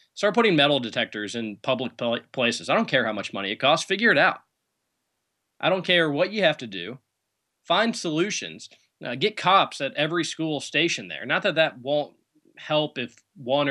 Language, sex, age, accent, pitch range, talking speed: English, male, 20-39, American, 110-155 Hz, 190 wpm